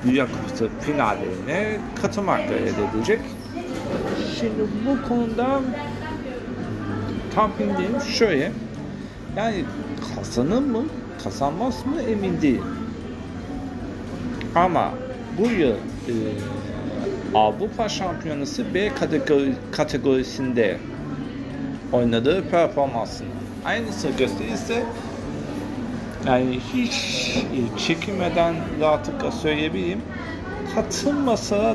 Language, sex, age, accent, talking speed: Turkish, male, 50-69, native, 70 wpm